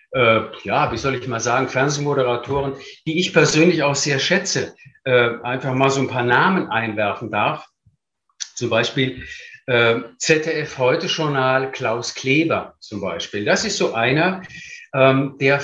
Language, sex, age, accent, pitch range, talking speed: German, male, 50-69, German, 130-165 Hz, 125 wpm